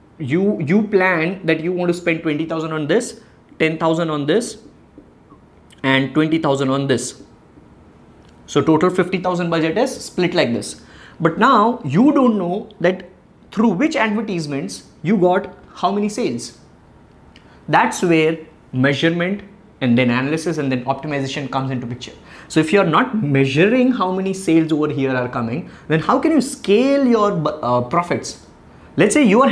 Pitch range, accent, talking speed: 140-195 Hz, Indian, 155 wpm